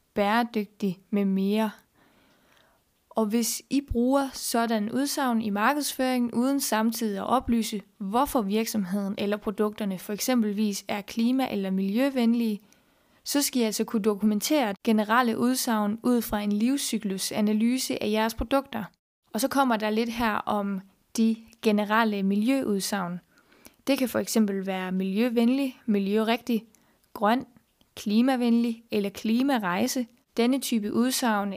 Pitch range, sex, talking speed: 205-240 Hz, female, 125 wpm